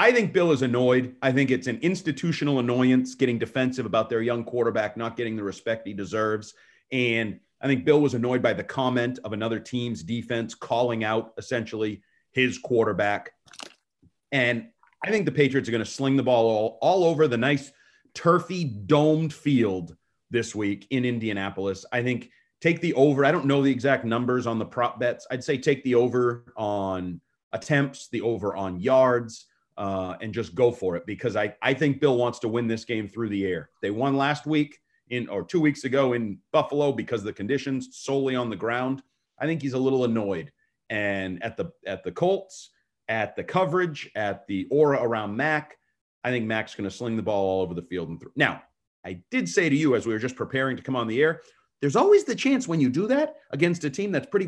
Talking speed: 210 wpm